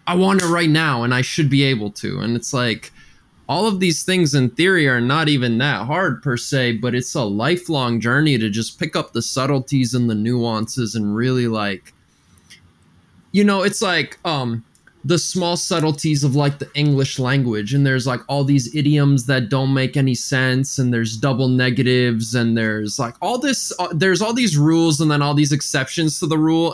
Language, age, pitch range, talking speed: English, 20-39, 120-150 Hz, 200 wpm